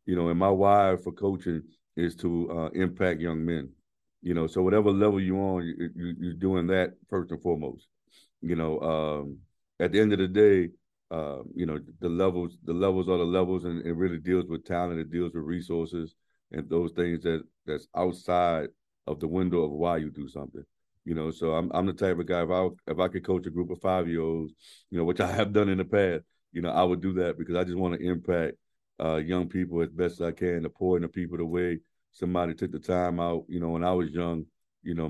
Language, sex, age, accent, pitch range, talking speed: English, male, 50-69, American, 80-90 Hz, 245 wpm